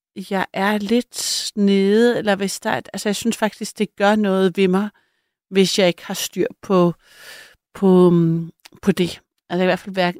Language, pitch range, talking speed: Danish, 175-210 Hz, 180 wpm